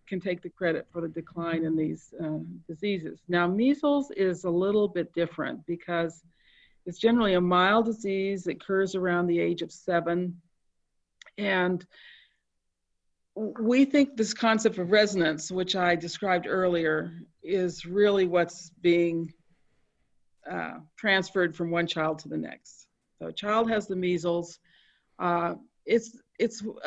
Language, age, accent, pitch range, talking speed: English, 50-69, American, 170-210 Hz, 140 wpm